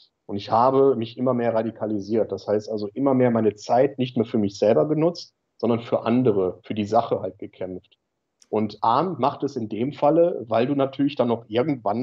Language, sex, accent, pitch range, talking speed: German, male, German, 105-125 Hz, 205 wpm